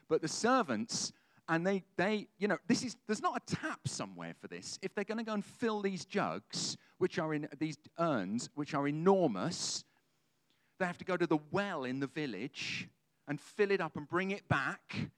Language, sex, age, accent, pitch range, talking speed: English, male, 40-59, British, 140-200 Hz, 205 wpm